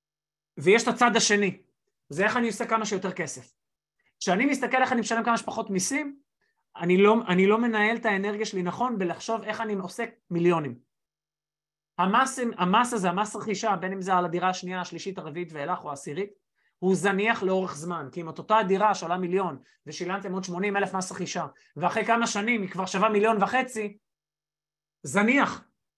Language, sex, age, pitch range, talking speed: Hebrew, male, 30-49, 165-220 Hz, 175 wpm